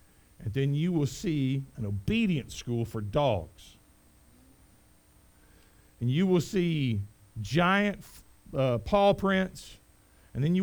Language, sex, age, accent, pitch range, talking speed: English, male, 50-69, American, 125-190 Hz, 120 wpm